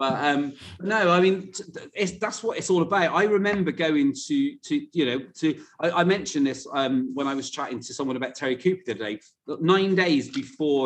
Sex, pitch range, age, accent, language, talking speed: male, 125-165 Hz, 30-49, British, English, 215 wpm